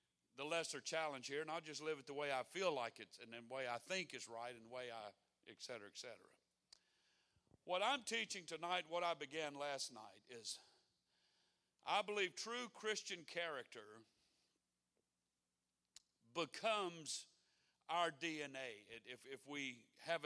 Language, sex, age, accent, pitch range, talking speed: English, male, 50-69, American, 135-175 Hz, 155 wpm